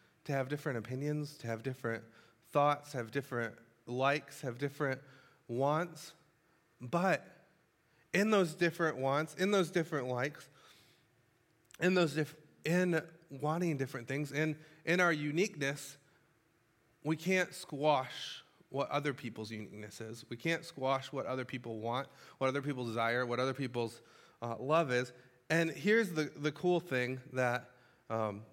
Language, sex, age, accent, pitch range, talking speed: English, male, 30-49, American, 120-155 Hz, 140 wpm